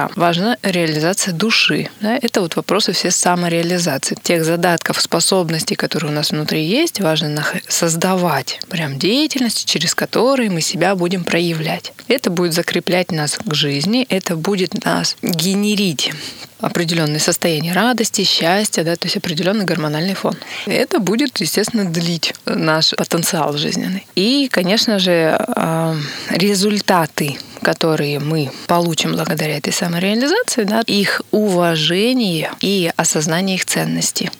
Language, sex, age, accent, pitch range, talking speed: Russian, female, 20-39, native, 165-205 Hz, 125 wpm